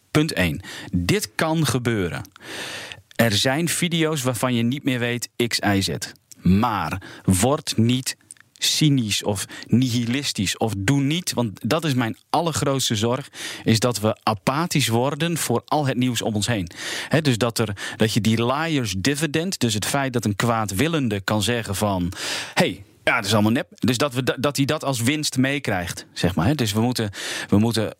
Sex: male